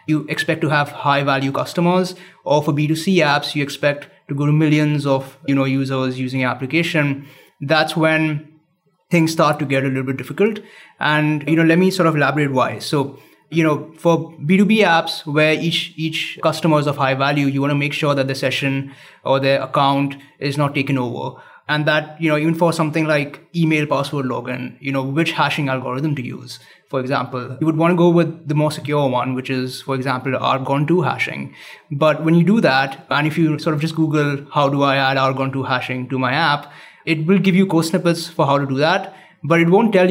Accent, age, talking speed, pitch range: Indian, 20-39, 215 wpm, 140-165 Hz